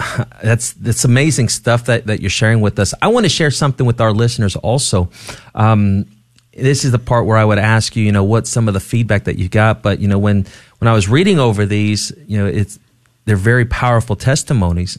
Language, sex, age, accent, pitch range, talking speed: English, male, 30-49, American, 100-125 Hz, 225 wpm